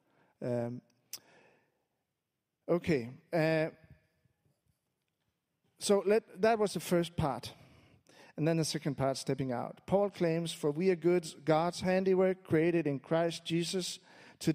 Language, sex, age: English, male, 40-59